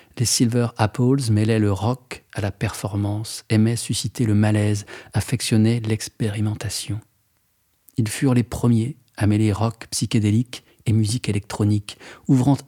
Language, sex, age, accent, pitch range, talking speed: French, male, 40-59, French, 105-125 Hz, 130 wpm